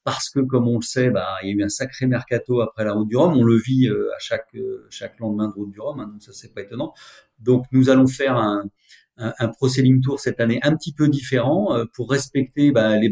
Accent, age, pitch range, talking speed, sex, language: French, 40-59, 105-125 Hz, 260 wpm, male, French